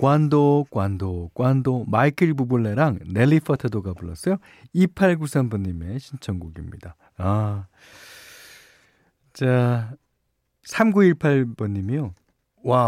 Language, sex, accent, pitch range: Korean, male, native, 100-165 Hz